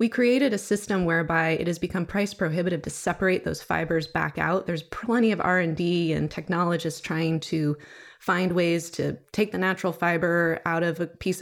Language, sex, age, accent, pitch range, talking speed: English, female, 20-39, American, 165-195 Hz, 185 wpm